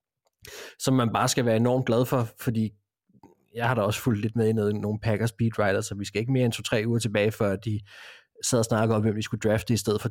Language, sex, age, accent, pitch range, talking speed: Danish, male, 30-49, native, 105-125 Hz, 255 wpm